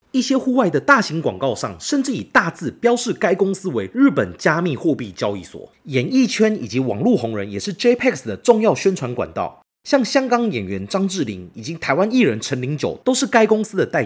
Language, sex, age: Chinese, male, 30-49